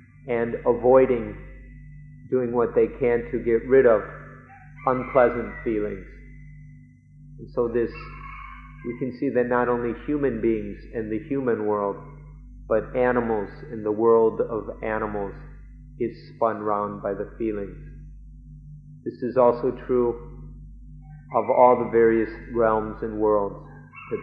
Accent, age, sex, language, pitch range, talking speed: American, 30-49, male, English, 110-140 Hz, 130 wpm